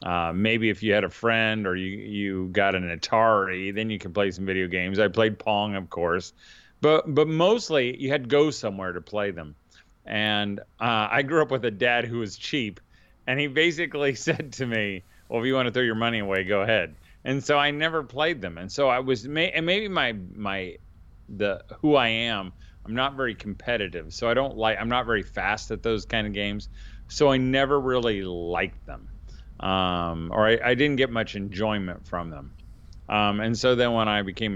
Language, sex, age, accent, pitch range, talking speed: English, male, 40-59, American, 100-125 Hz, 210 wpm